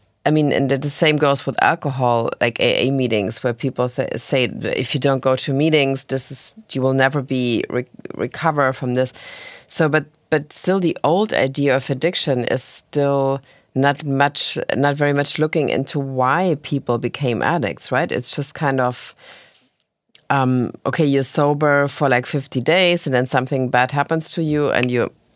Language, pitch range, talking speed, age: English, 130-155 Hz, 180 wpm, 30-49